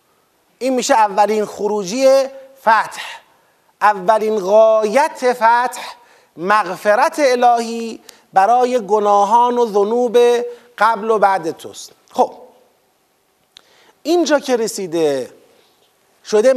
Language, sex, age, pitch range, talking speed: Persian, male, 30-49, 200-245 Hz, 85 wpm